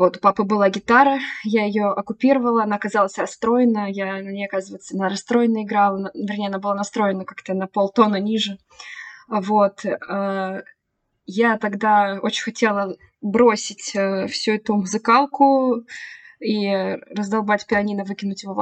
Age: 20-39